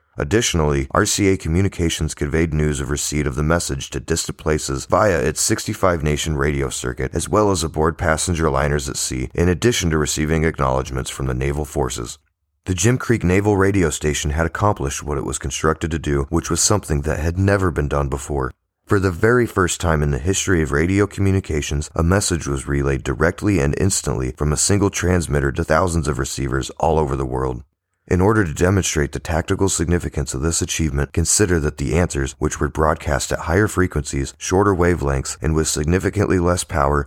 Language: English